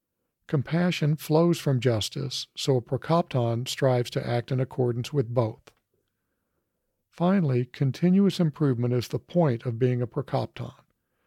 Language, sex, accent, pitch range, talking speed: English, male, American, 120-150 Hz, 130 wpm